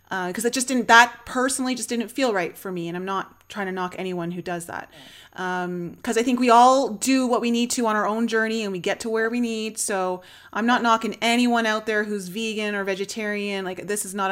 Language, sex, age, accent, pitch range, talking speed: English, female, 30-49, American, 195-245 Hz, 250 wpm